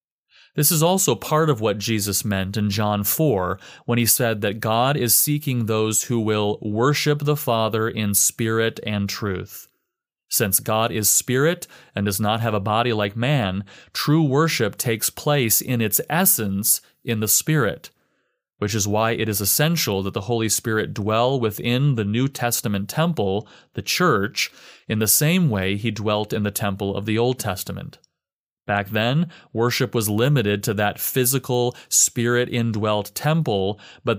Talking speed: 160 wpm